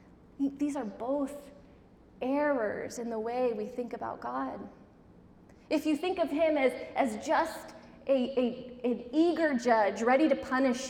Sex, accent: female, American